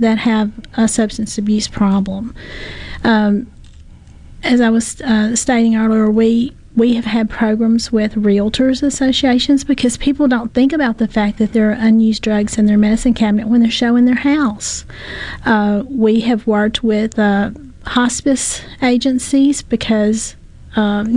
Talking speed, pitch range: 145 wpm, 215-245 Hz